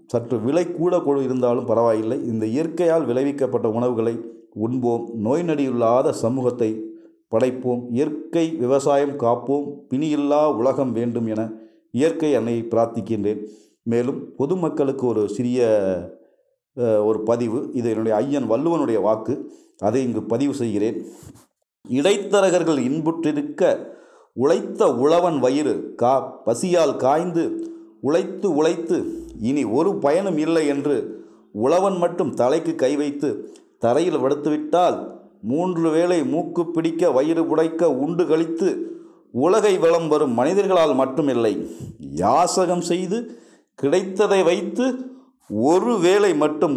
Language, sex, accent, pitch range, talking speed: English, male, Indian, 120-180 Hz, 100 wpm